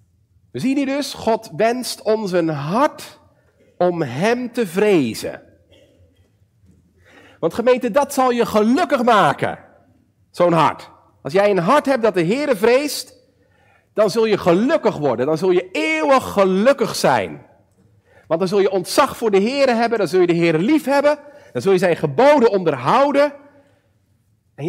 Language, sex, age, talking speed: Dutch, male, 50-69, 160 wpm